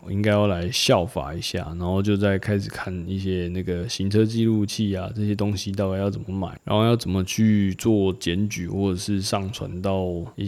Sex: male